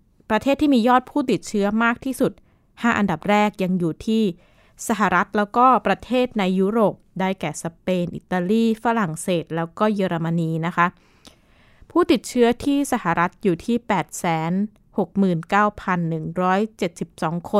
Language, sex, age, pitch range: Thai, female, 20-39, 175-220 Hz